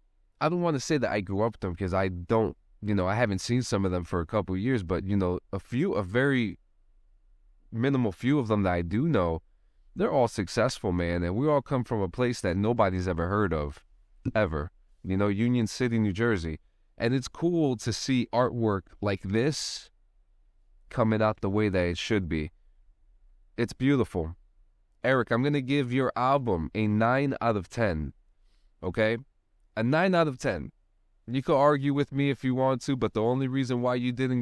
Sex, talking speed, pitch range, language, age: male, 205 wpm, 95-125 Hz, English, 20-39